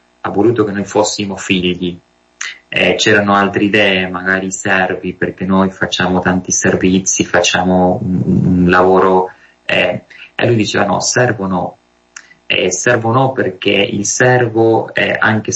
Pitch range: 90-100 Hz